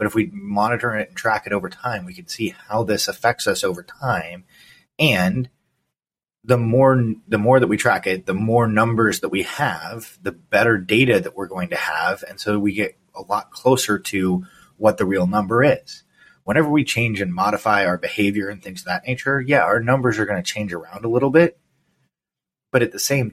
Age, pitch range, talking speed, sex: 20-39, 100-130 Hz, 210 wpm, male